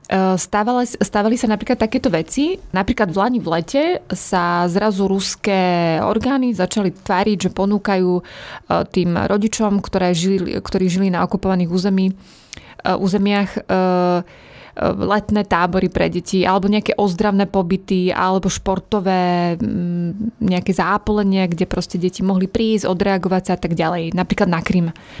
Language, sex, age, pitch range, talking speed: Slovak, female, 20-39, 180-210 Hz, 130 wpm